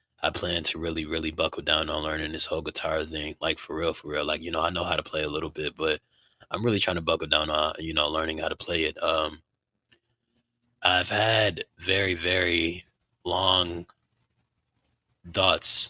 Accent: American